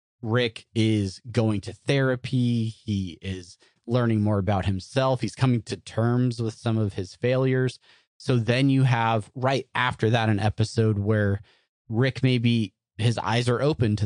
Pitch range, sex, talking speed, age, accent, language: 100-125 Hz, male, 160 wpm, 30-49, American, English